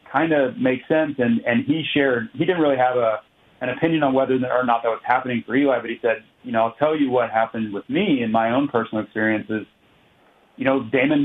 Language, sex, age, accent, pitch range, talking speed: English, male, 30-49, American, 115-135 Hz, 235 wpm